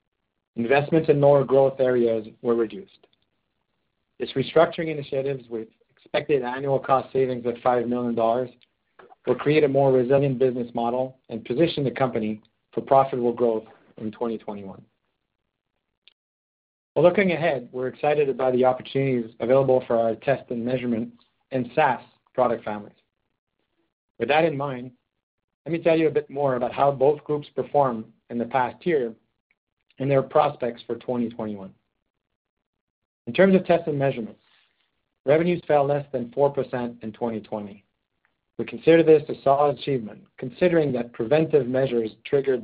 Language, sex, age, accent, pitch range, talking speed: English, male, 40-59, American, 115-140 Hz, 140 wpm